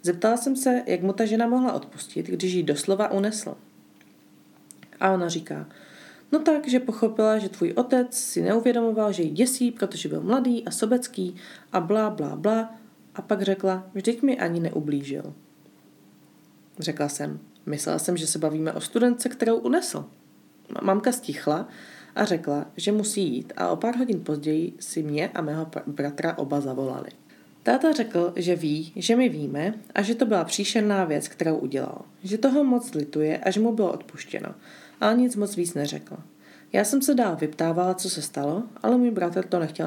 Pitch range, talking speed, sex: 160-230 Hz, 175 wpm, female